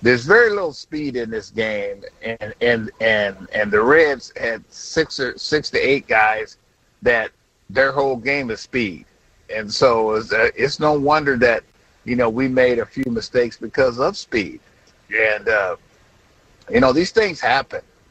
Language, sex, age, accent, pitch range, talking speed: English, male, 50-69, American, 120-150 Hz, 170 wpm